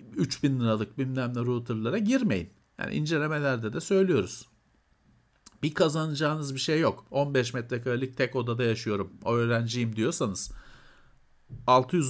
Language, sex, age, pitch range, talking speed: Turkish, male, 50-69, 110-150 Hz, 120 wpm